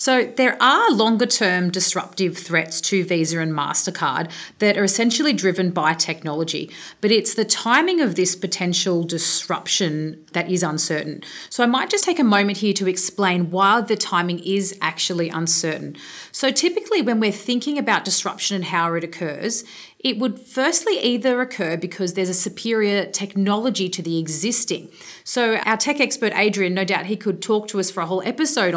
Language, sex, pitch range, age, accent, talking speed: English, female, 175-235 Hz, 40-59, Australian, 175 wpm